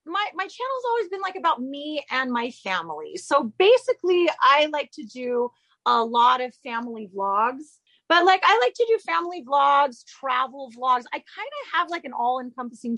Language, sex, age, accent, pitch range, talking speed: English, female, 30-49, American, 210-280 Hz, 185 wpm